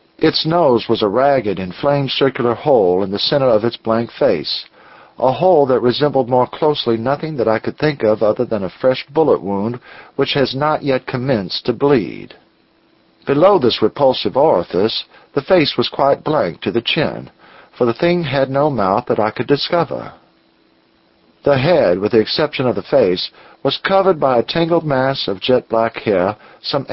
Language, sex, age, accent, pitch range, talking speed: English, male, 50-69, American, 115-150 Hz, 180 wpm